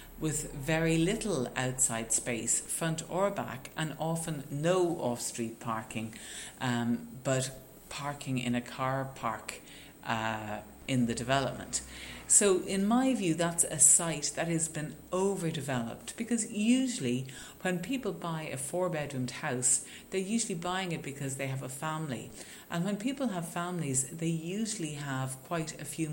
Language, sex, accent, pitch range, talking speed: English, female, Irish, 125-170 Hz, 140 wpm